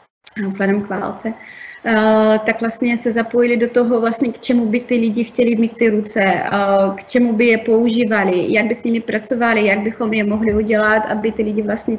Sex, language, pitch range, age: female, Czech, 215-245 Hz, 30-49